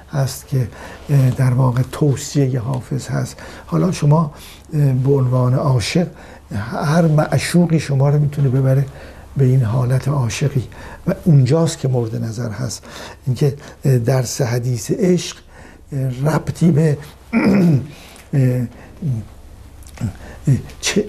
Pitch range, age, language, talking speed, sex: 125-150 Hz, 60-79, Persian, 100 wpm, male